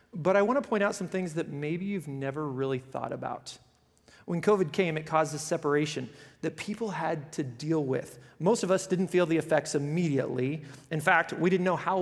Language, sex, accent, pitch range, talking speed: English, male, American, 145-175 Hz, 205 wpm